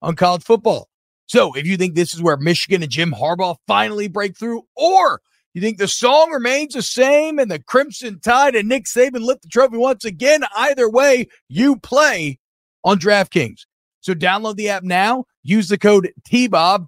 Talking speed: 185 wpm